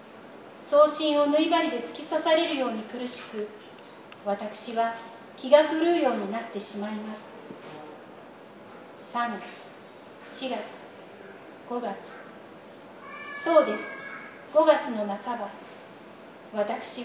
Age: 40-59